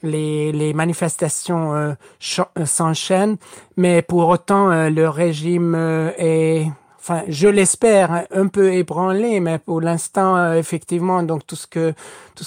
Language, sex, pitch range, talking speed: French, male, 160-185 Hz, 150 wpm